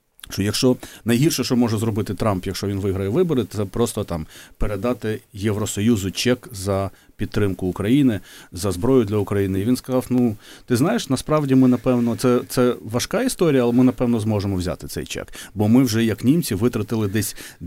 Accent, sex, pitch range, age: native, male, 95-120 Hz, 30-49